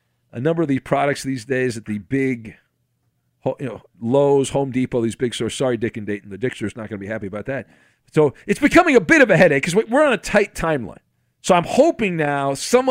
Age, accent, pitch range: 40-59, American, 115-150 Hz